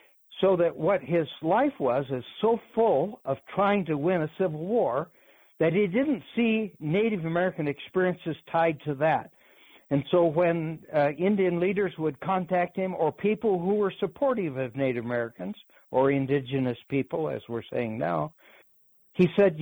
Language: English